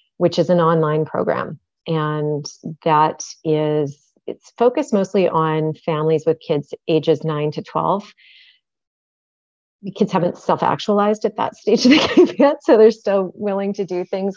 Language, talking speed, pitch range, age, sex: English, 155 wpm, 150-180 Hz, 30-49, female